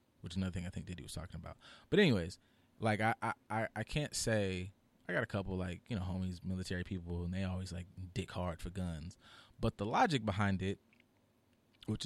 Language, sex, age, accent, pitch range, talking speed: English, male, 20-39, American, 90-110 Hz, 210 wpm